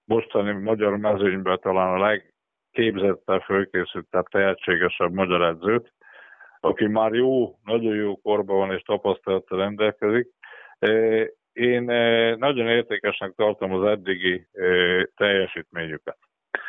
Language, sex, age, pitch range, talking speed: Hungarian, male, 50-69, 100-120 Hz, 95 wpm